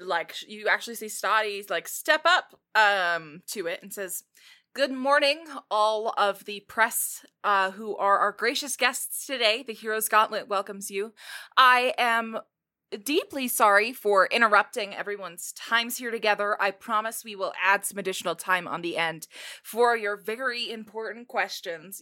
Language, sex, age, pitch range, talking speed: English, female, 20-39, 195-245 Hz, 155 wpm